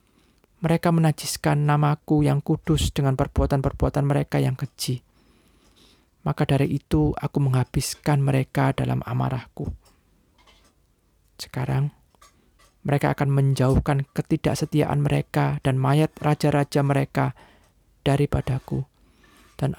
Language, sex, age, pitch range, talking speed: Indonesian, male, 20-39, 130-150 Hz, 90 wpm